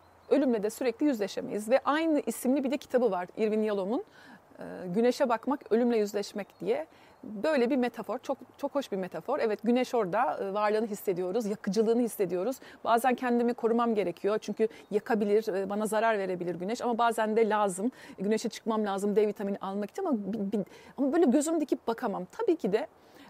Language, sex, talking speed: Turkish, female, 160 wpm